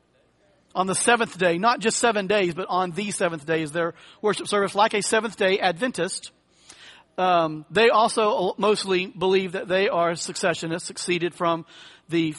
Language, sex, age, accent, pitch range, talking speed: English, male, 40-59, American, 175-220 Hz, 165 wpm